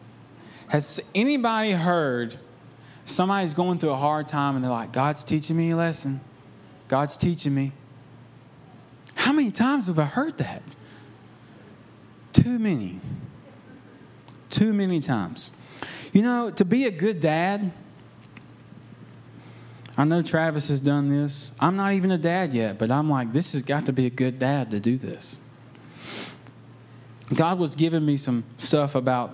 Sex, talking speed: male, 145 wpm